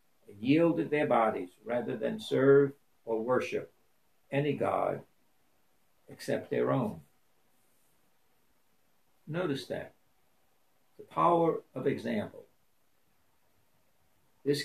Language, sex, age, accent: English, male, 60-79, American